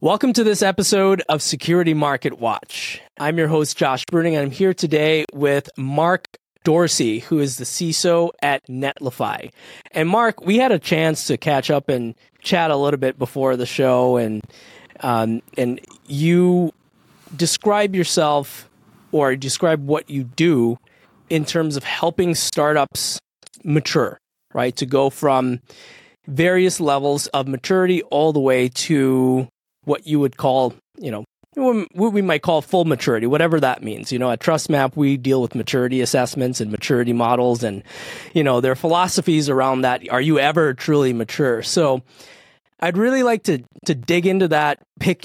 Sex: male